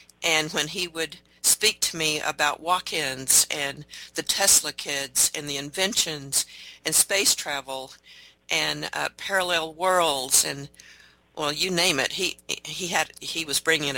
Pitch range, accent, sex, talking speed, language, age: 145-175 Hz, American, female, 145 wpm, English, 50-69